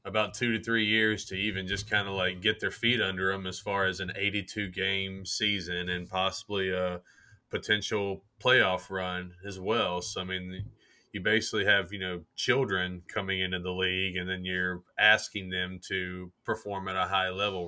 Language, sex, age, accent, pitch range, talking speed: English, male, 20-39, American, 90-105 Hz, 185 wpm